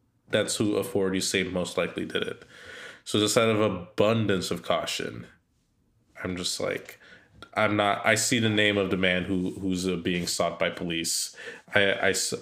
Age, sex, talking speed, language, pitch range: 20-39, male, 175 wpm, English, 90-110 Hz